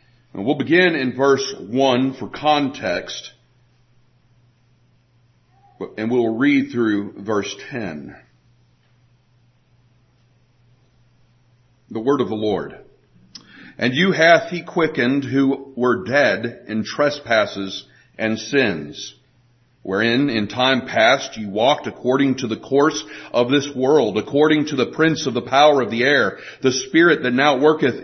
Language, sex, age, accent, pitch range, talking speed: English, male, 50-69, American, 115-140 Hz, 125 wpm